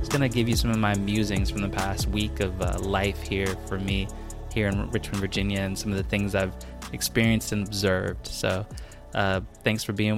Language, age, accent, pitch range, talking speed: English, 20-39, American, 95-110 Hz, 220 wpm